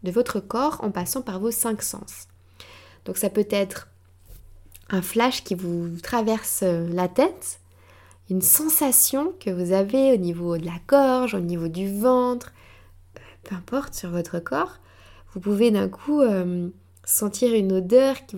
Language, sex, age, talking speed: French, female, 20-39, 155 wpm